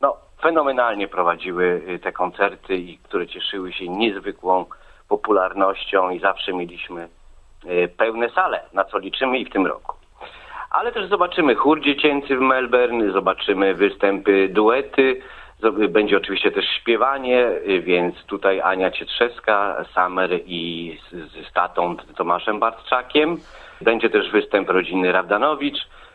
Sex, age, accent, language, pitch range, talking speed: male, 40-59, native, Polish, 90-125 Hz, 115 wpm